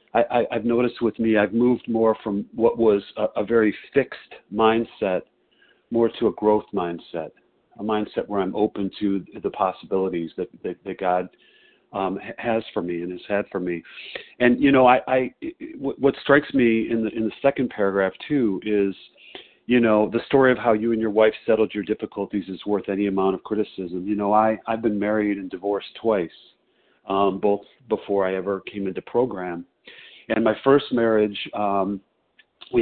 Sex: male